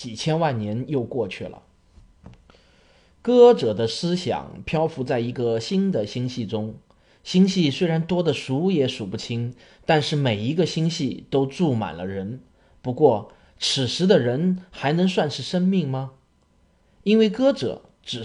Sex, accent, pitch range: male, native, 110-165 Hz